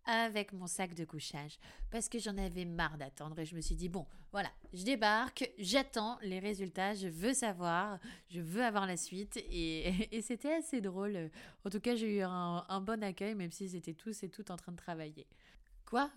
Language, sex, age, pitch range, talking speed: French, female, 20-39, 175-260 Hz, 210 wpm